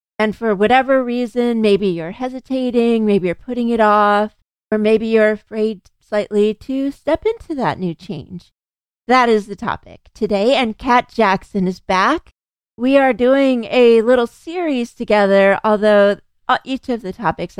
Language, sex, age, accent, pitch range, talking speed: English, female, 40-59, American, 195-235 Hz, 155 wpm